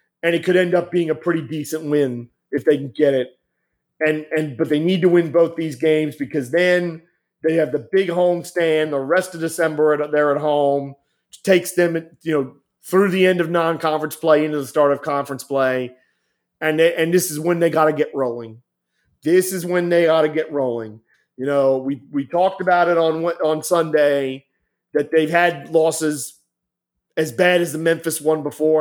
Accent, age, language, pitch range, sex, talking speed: American, 40-59, English, 145-175 Hz, male, 205 wpm